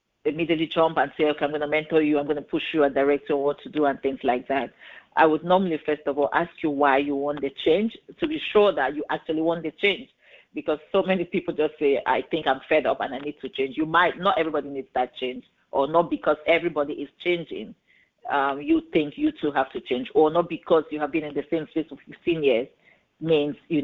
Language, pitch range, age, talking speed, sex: English, 140-160 Hz, 50-69, 250 wpm, female